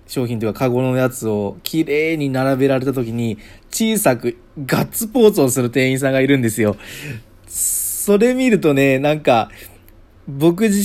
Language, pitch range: Japanese, 100-135 Hz